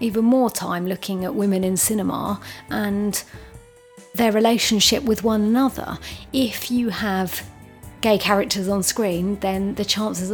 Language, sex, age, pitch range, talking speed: English, female, 30-49, 185-215 Hz, 140 wpm